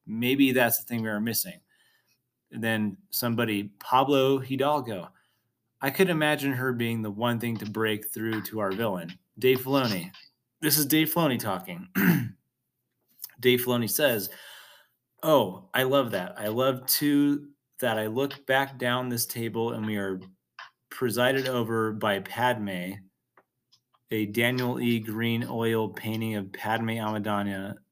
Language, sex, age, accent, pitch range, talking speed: English, male, 30-49, American, 110-125 Hz, 140 wpm